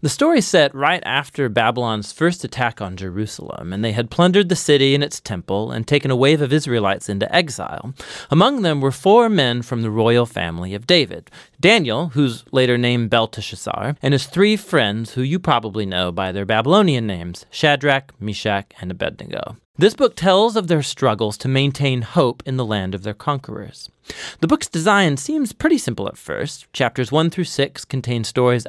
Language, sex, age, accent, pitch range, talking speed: English, male, 30-49, American, 110-165 Hz, 185 wpm